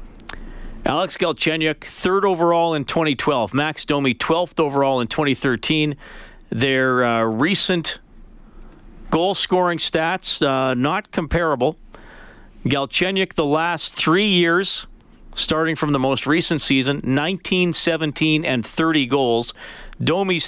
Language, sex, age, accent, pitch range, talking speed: English, male, 40-59, American, 115-150 Hz, 110 wpm